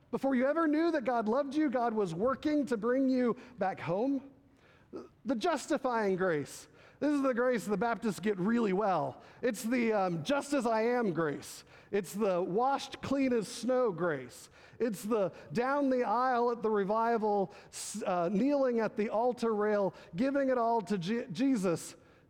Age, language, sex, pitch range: 40-59, English, male, 195-260 Hz